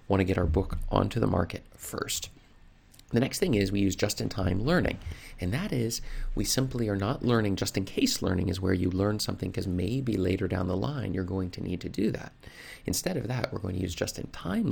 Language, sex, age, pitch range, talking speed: English, male, 30-49, 90-115 Hz, 215 wpm